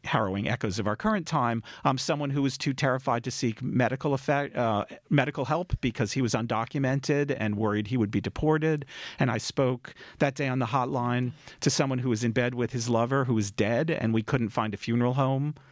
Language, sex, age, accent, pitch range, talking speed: English, male, 40-59, American, 105-140 Hz, 215 wpm